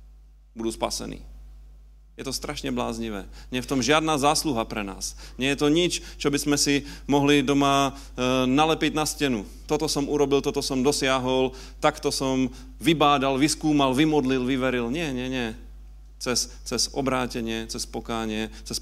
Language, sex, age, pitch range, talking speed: Slovak, male, 40-59, 110-140 Hz, 155 wpm